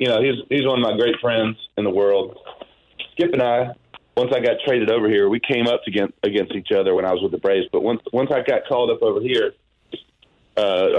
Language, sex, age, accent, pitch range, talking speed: English, male, 40-59, American, 110-160 Hz, 240 wpm